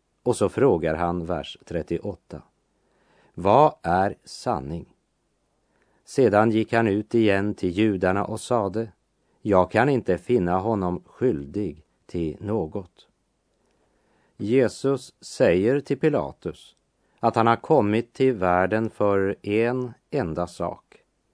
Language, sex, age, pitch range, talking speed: Swedish, male, 40-59, 90-115 Hz, 110 wpm